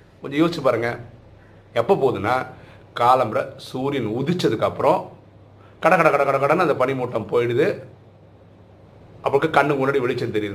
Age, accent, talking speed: 50-69, native, 120 wpm